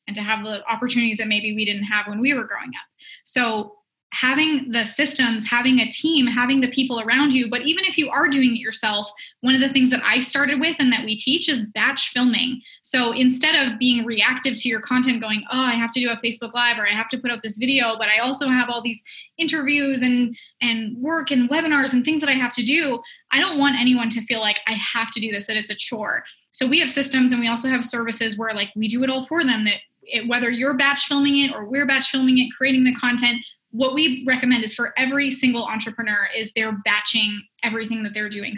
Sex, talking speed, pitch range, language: female, 245 wpm, 225-260 Hz, English